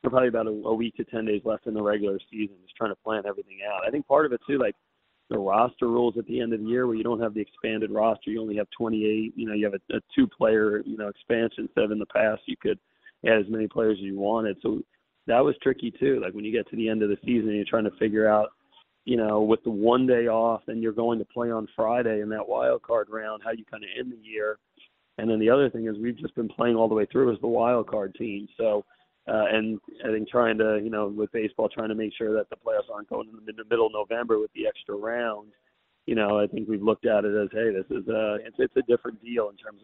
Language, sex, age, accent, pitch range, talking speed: English, male, 40-59, American, 105-115 Hz, 275 wpm